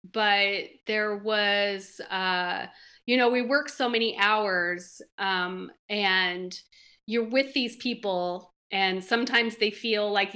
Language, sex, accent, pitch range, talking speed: English, female, American, 190-235 Hz, 125 wpm